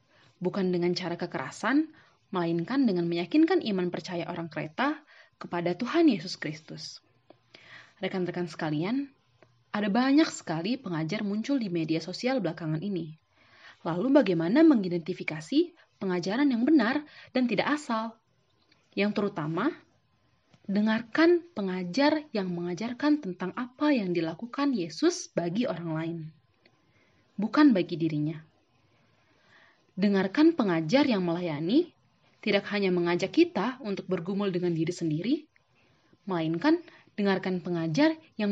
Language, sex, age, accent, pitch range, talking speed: Indonesian, female, 30-49, native, 165-240 Hz, 110 wpm